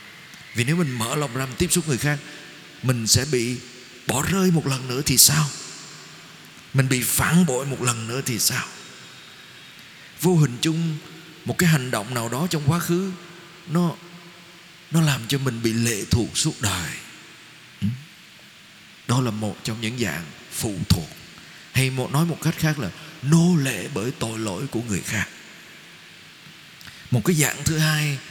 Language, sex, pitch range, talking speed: Vietnamese, male, 120-160 Hz, 165 wpm